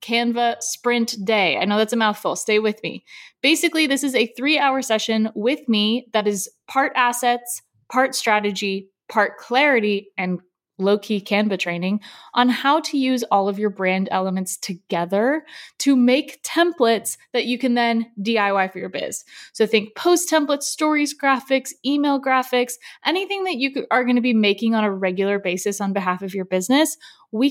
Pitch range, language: 210-275 Hz, English